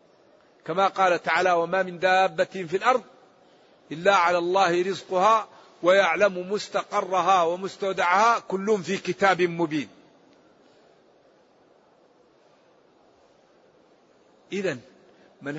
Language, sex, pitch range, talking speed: Arabic, male, 170-200 Hz, 80 wpm